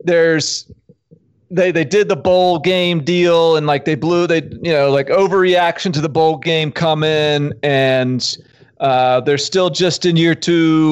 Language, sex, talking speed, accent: English, male, 170 wpm, American